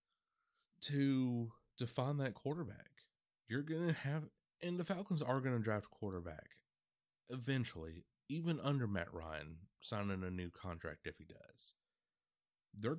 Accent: American